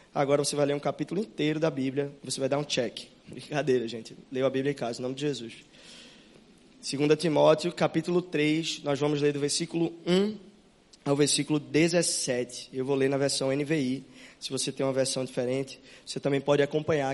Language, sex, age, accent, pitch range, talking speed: Portuguese, male, 20-39, Brazilian, 135-160 Hz, 190 wpm